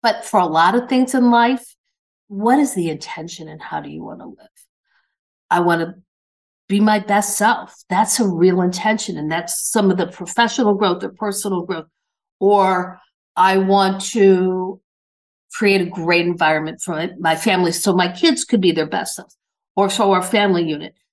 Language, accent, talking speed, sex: English, American, 180 wpm, female